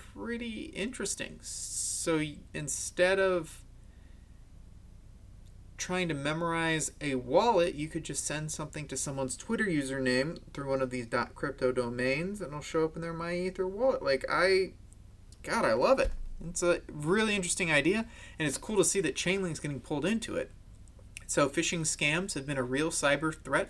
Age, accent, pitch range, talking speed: 30-49, American, 125-175 Hz, 165 wpm